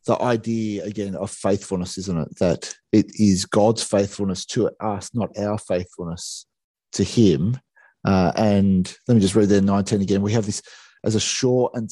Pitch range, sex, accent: 100-115 Hz, male, Australian